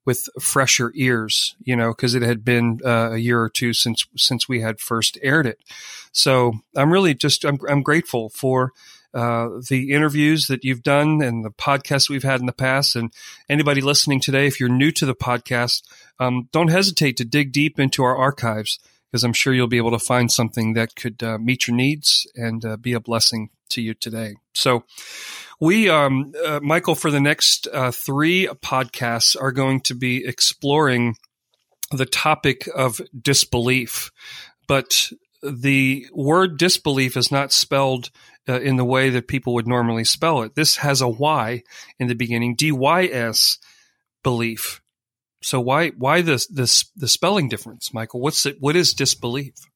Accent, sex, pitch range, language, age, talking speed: American, male, 120-140 Hz, English, 40-59, 175 wpm